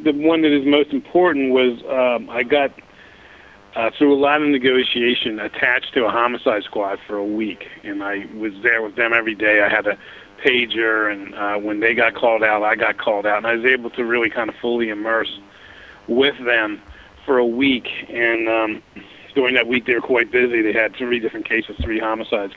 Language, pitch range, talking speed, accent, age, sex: English, 105-130 Hz, 205 wpm, American, 40-59, male